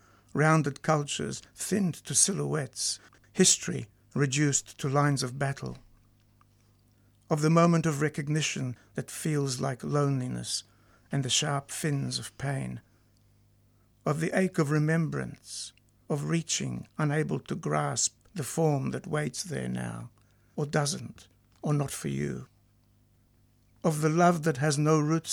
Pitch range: 105-155 Hz